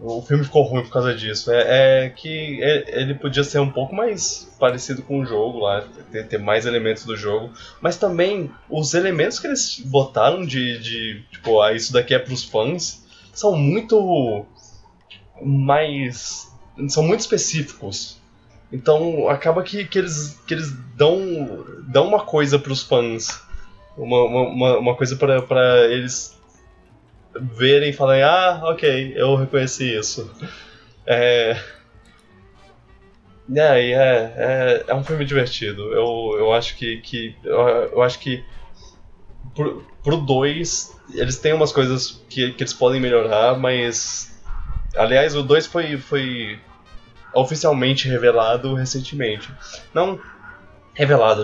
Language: Portuguese